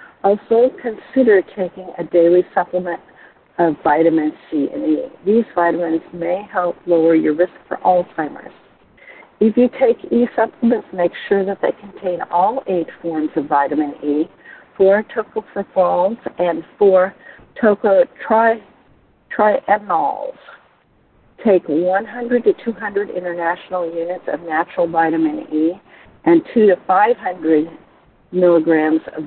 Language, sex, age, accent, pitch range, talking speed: English, female, 50-69, American, 165-215 Hz, 115 wpm